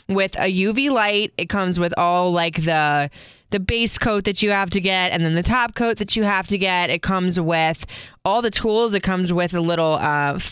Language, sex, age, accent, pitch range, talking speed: English, female, 20-39, American, 180-225 Hz, 230 wpm